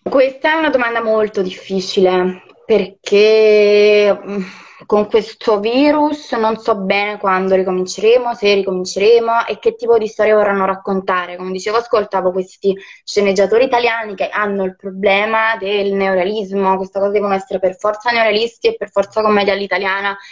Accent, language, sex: native, Italian, female